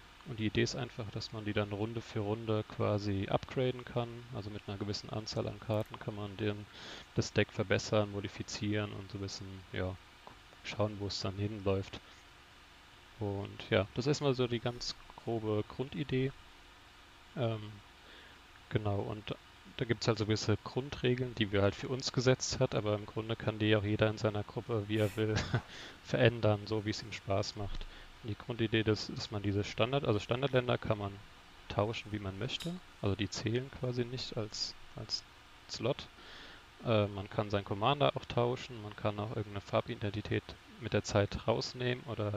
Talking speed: 175 wpm